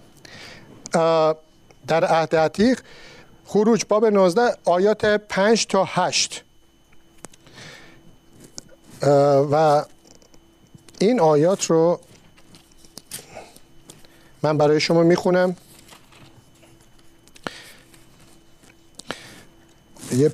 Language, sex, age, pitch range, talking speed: Persian, male, 50-69, 160-210 Hz, 55 wpm